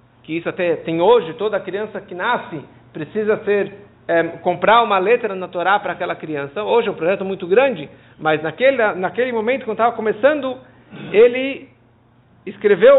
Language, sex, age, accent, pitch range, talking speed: Portuguese, male, 50-69, Brazilian, 185-245 Hz, 160 wpm